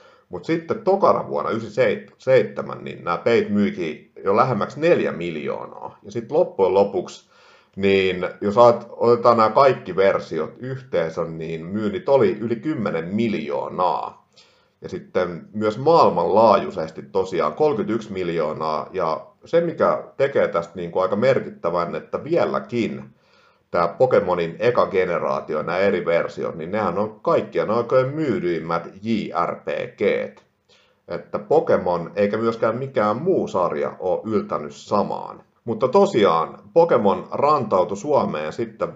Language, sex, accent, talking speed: Finnish, male, native, 120 wpm